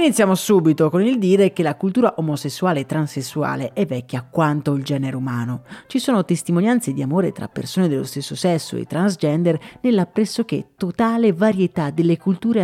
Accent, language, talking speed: native, Italian, 165 wpm